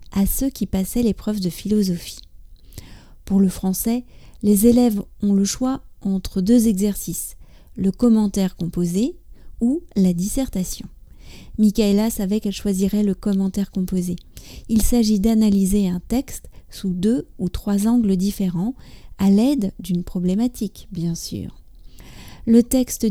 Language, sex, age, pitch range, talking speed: French, female, 30-49, 195-230 Hz, 130 wpm